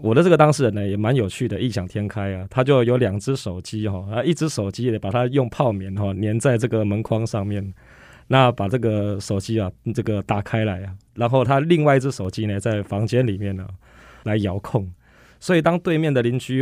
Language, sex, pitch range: Chinese, male, 100-125 Hz